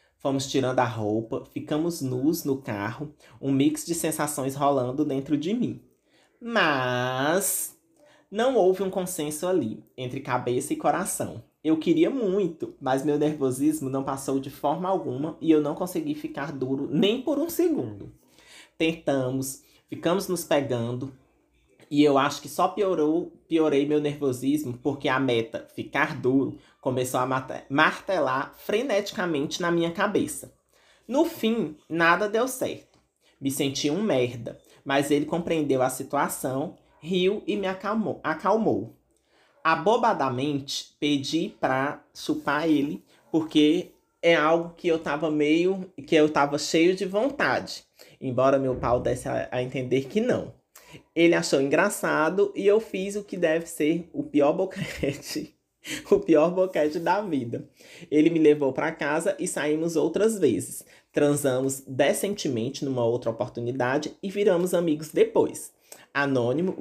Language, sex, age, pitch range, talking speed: Portuguese, male, 20-39, 135-180 Hz, 140 wpm